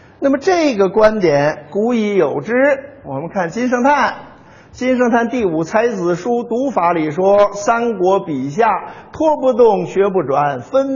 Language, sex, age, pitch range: Chinese, male, 50-69, 155-245 Hz